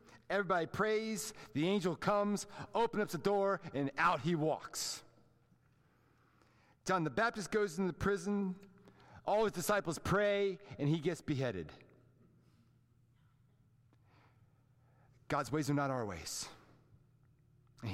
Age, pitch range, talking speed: 40-59, 130-170 Hz, 115 wpm